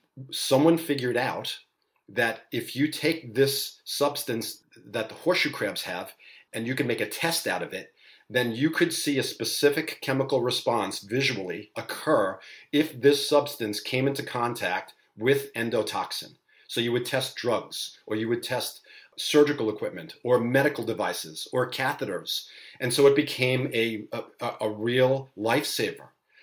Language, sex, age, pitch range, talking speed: English, male, 40-59, 110-140 Hz, 150 wpm